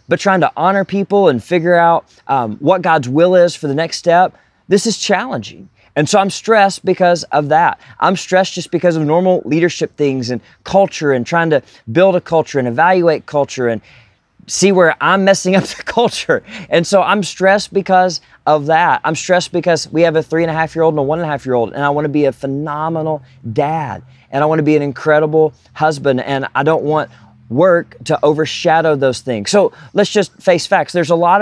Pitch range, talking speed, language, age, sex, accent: 130-175 Hz, 220 wpm, English, 20-39, male, American